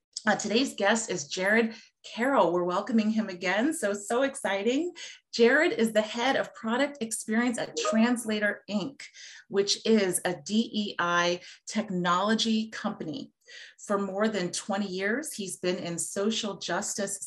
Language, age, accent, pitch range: English, 30-49, American, 190-245 Hz